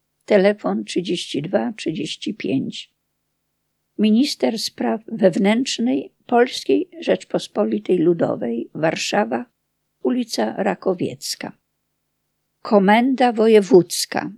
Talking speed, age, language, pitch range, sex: 55 wpm, 50-69, Polish, 185-235 Hz, female